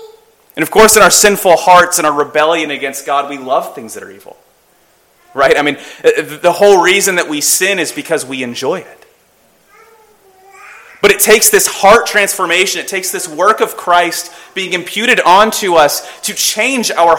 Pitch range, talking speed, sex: 160-215 Hz, 180 wpm, male